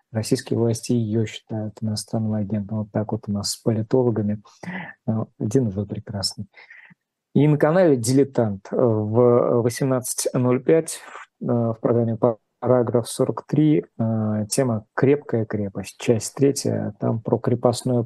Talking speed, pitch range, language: 115 wpm, 115-135 Hz, Russian